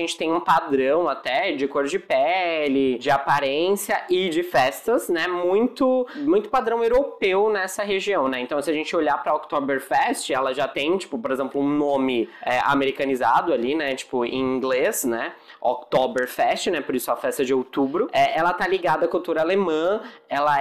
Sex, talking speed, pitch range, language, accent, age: male, 180 wpm, 140-185 Hz, Portuguese, Brazilian, 20-39